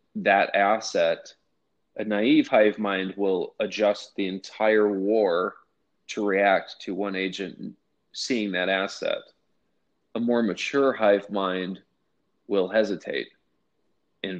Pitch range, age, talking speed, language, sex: 95-110 Hz, 20-39, 115 wpm, English, male